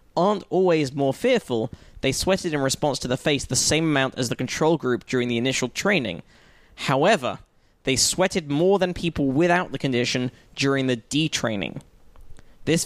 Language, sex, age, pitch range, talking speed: English, male, 20-39, 125-155 Hz, 165 wpm